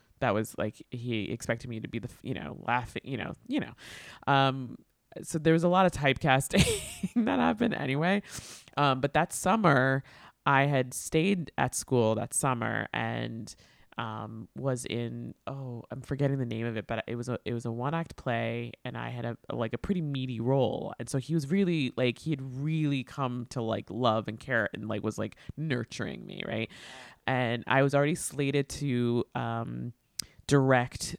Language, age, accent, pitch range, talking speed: English, 20-39, American, 115-145 Hz, 190 wpm